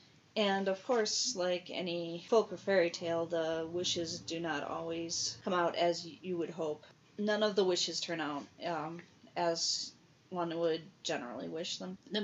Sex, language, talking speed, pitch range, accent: female, English, 165 wpm, 160-185 Hz, American